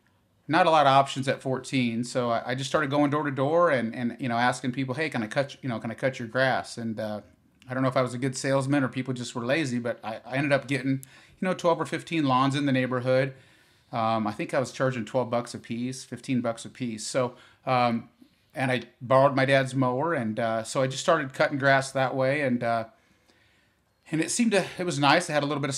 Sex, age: male, 30-49